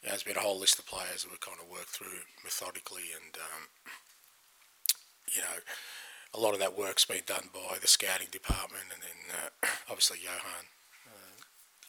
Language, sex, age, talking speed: English, male, 30-49, 180 wpm